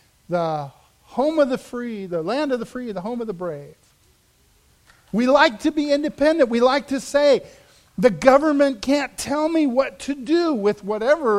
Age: 50-69